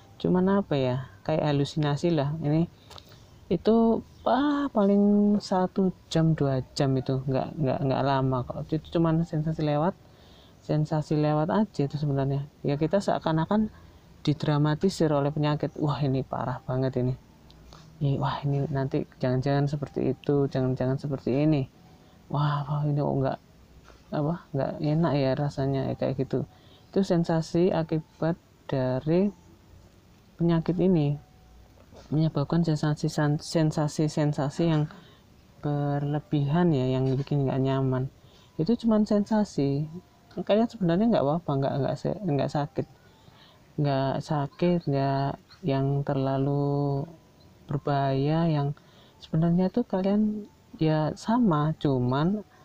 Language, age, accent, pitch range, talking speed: Indonesian, 20-39, native, 135-165 Hz, 115 wpm